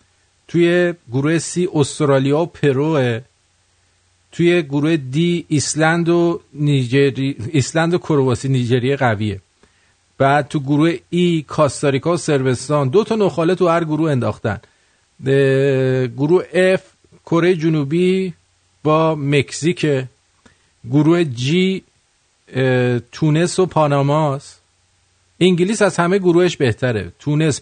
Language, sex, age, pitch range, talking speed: English, male, 50-69, 100-160 Hz, 105 wpm